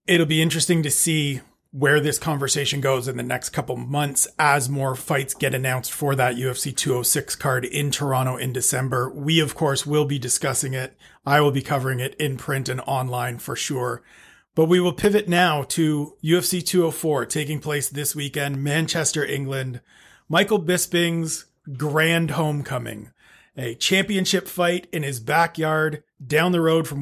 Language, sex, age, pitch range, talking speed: English, male, 40-59, 140-165 Hz, 165 wpm